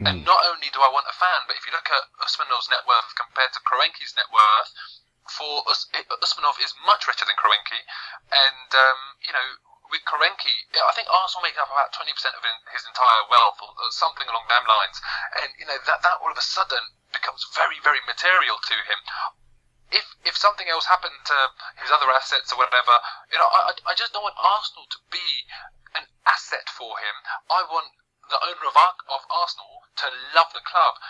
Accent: British